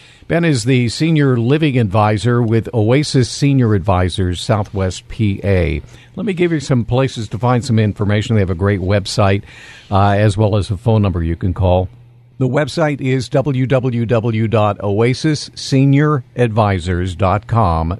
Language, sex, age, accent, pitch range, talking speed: English, male, 50-69, American, 95-125 Hz, 135 wpm